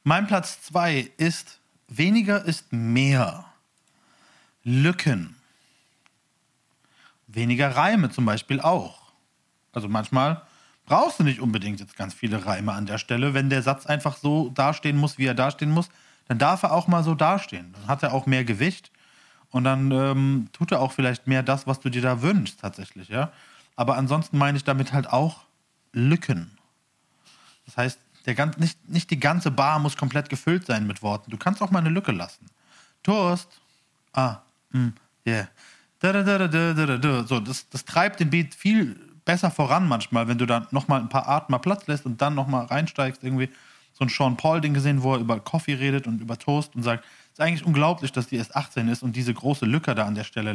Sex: male